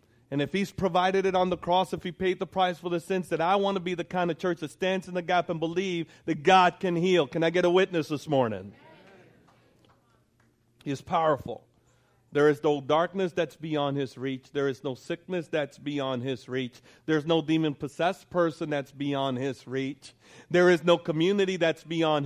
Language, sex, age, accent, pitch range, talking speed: English, male, 40-59, American, 125-180 Hz, 205 wpm